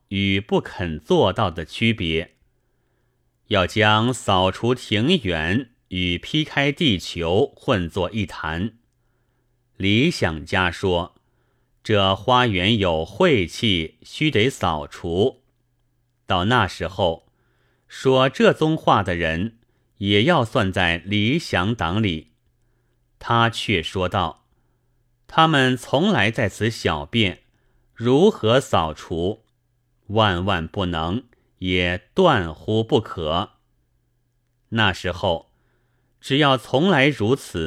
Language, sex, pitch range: Chinese, male, 95-125 Hz